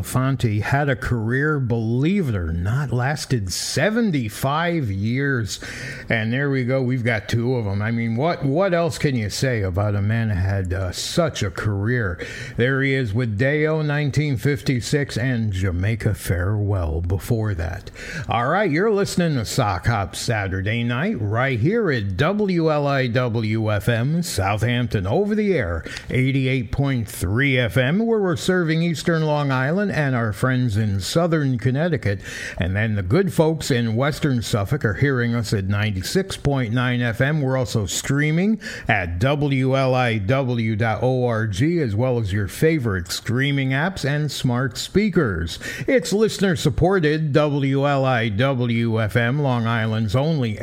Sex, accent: male, American